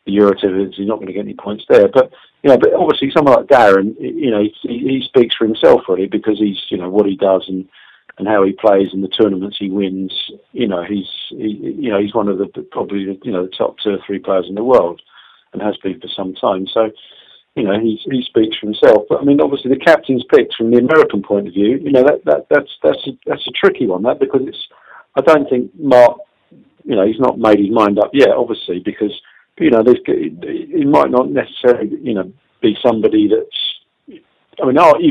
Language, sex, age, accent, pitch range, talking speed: English, male, 50-69, British, 95-120 Hz, 230 wpm